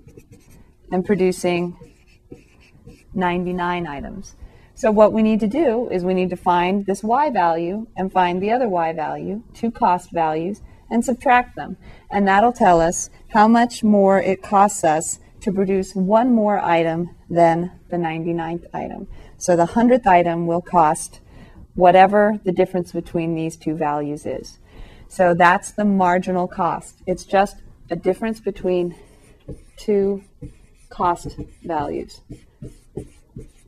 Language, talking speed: English, 135 wpm